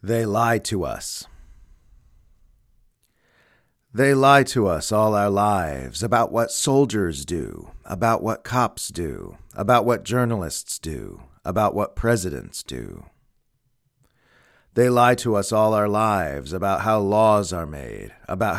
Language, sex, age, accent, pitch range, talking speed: English, male, 40-59, American, 95-120 Hz, 130 wpm